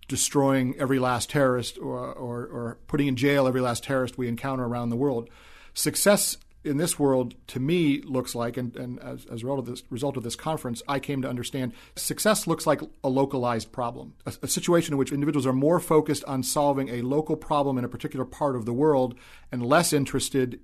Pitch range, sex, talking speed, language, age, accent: 125-145 Hz, male, 200 wpm, English, 40-59, American